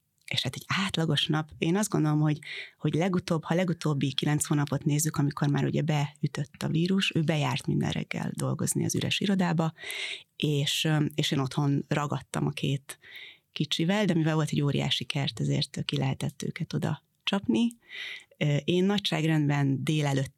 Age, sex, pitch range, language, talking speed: 30-49, female, 145-165 Hz, Hungarian, 155 wpm